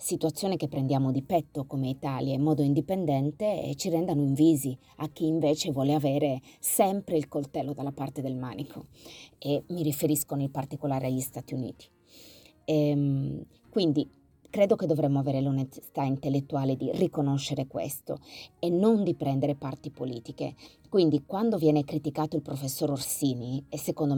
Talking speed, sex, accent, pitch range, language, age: 145 wpm, female, native, 135-160 Hz, Italian, 30-49